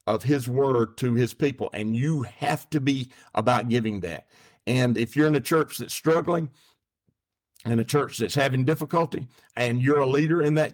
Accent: American